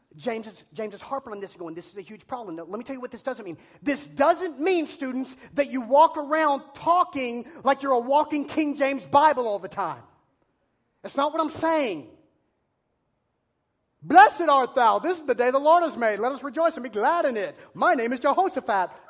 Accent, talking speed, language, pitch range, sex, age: American, 220 wpm, English, 210-290 Hz, male, 40-59